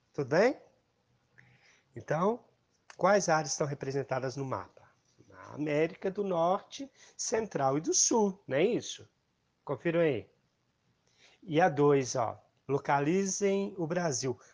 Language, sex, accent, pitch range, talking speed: Portuguese, male, Brazilian, 135-170 Hz, 115 wpm